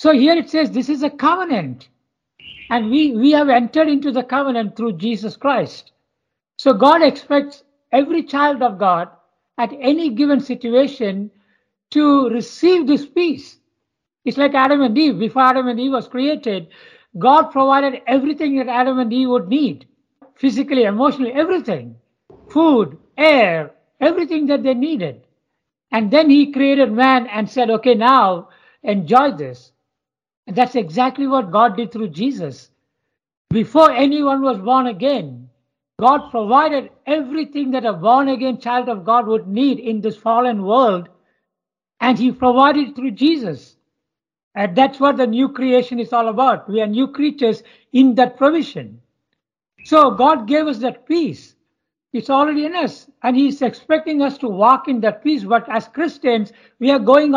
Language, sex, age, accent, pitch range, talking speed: English, male, 60-79, Indian, 230-285 Hz, 155 wpm